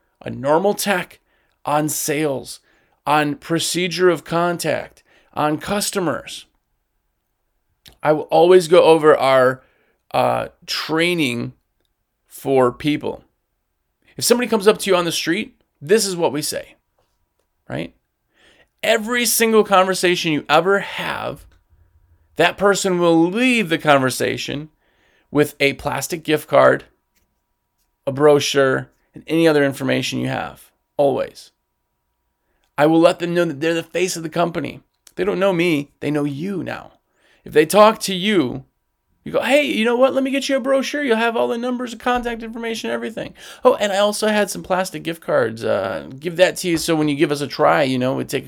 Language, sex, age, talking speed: English, male, 30-49, 165 wpm